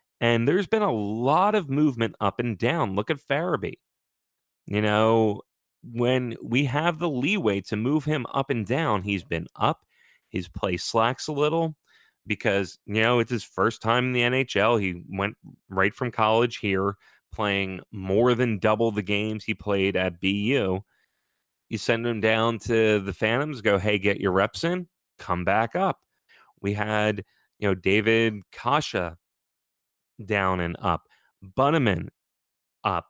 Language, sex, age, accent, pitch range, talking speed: English, male, 30-49, American, 100-130 Hz, 160 wpm